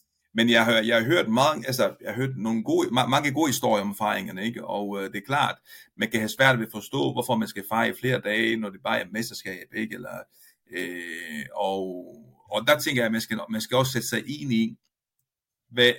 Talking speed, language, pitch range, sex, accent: 220 wpm, Danish, 105-125 Hz, male, native